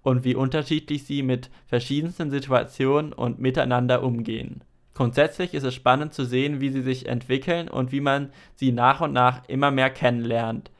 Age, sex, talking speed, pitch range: 20-39, male, 165 wpm, 125-145 Hz